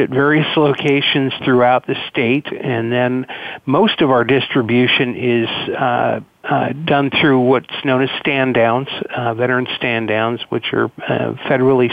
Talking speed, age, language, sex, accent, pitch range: 150 wpm, 50-69, English, male, American, 115-135 Hz